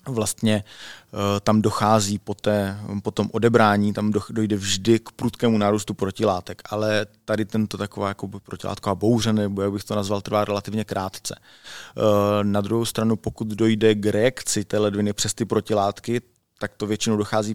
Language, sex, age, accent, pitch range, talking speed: Czech, male, 20-39, native, 100-105 Hz, 150 wpm